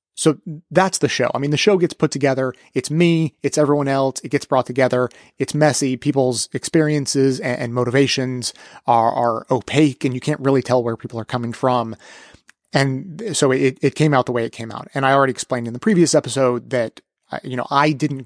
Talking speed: 205 wpm